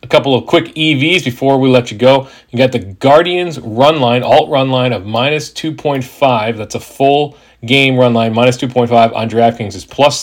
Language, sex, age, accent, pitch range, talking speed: English, male, 40-59, American, 110-130 Hz, 215 wpm